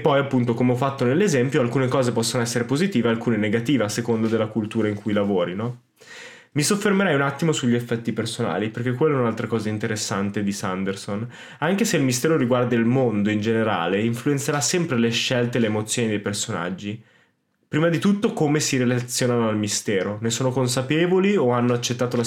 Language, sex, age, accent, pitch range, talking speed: Italian, male, 20-39, native, 115-140 Hz, 190 wpm